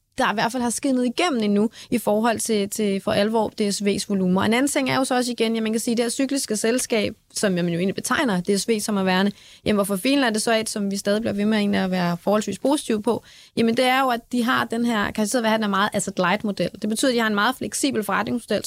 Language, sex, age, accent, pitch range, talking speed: Danish, female, 20-39, native, 200-240 Hz, 285 wpm